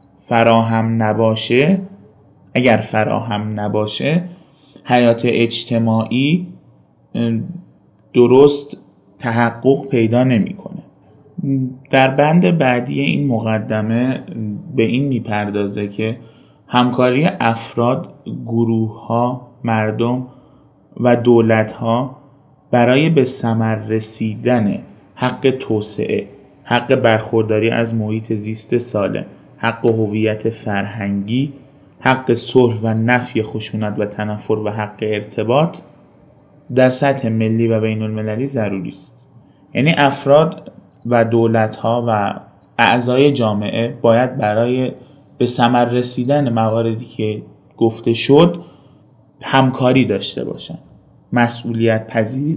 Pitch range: 110-130 Hz